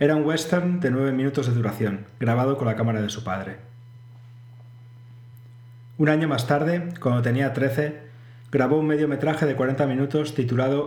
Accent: Spanish